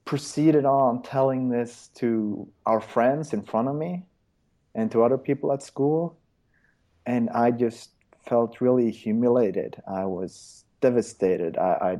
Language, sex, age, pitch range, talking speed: English, male, 30-49, 110-135 Hz, 140 wpm